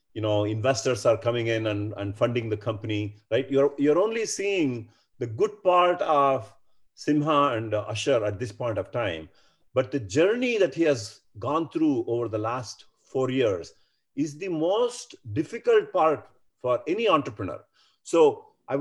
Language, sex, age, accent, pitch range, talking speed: Kannada, male, 40-59, native, 115-180 Hz, 170 wpm